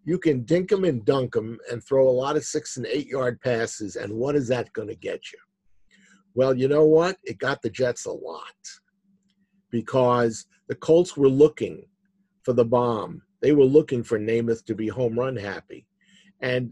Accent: American